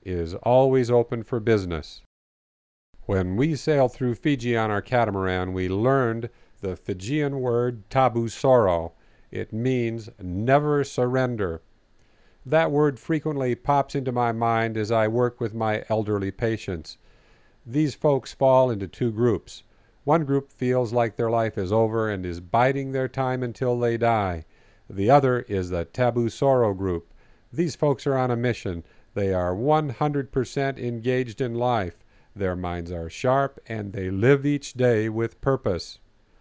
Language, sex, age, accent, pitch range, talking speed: English, male, 50-69, American, 100-135 Hz, 145 wpm